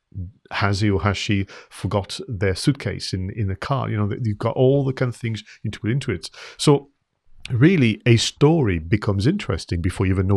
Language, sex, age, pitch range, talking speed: English, male, 40-59, 95-125 Hz, 205 wpm